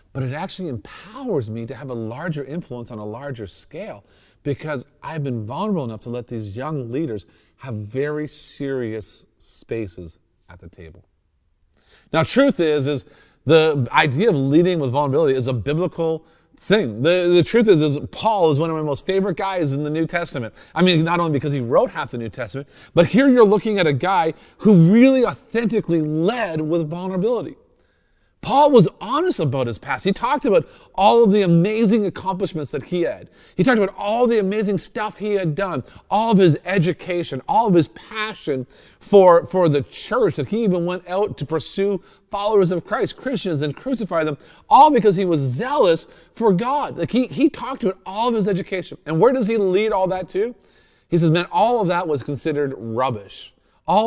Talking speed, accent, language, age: 190 wpm, American, English, 40-59